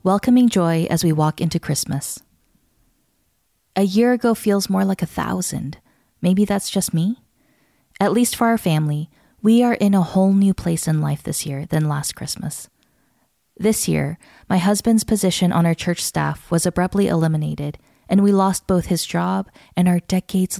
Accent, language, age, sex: American, English, 20-39, female